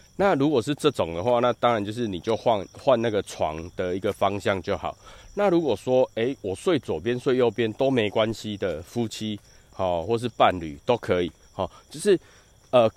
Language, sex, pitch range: Chinese, male, 90-125 Hz